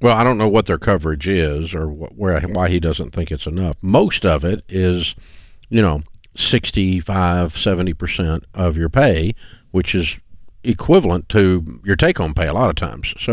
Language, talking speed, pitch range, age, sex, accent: English, 180 wpm, 85-105 Hz, 50-69, male, American